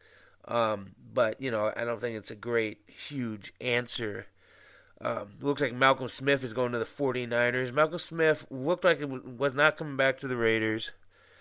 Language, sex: English, male